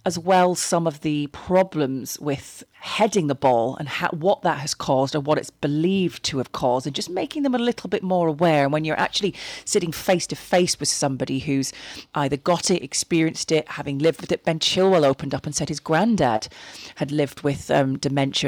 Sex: female